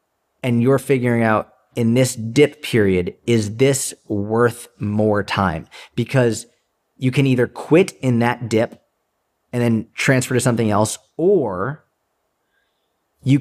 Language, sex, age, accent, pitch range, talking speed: English, male, 30-49, American, 110-130 Hz, 130 wpm